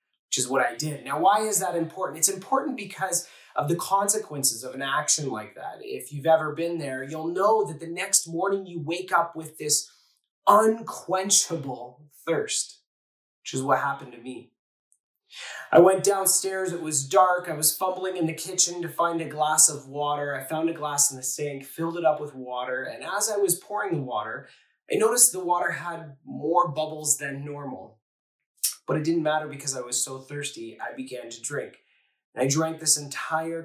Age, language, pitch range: 20-39, English, 135-175 Hz